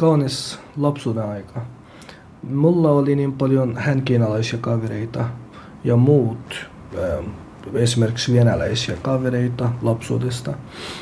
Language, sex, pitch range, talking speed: Finnish, male, 115-135 Hz, 80 wpm